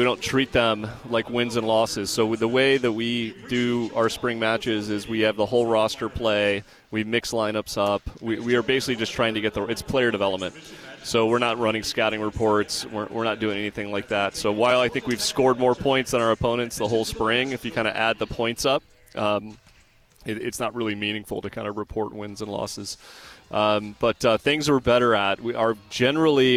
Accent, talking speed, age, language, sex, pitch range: American, 220 wpm, 30-49, English, male, 105-115 Hz